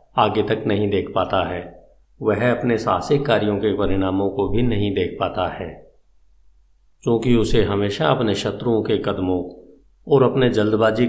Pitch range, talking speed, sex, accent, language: 90-115 Hz, 150 wpm, male, native, Hindi